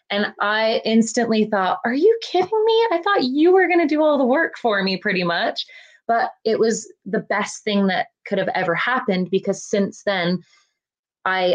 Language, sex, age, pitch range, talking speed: English, female, 20-39, 180-235 Hz, 190 wpm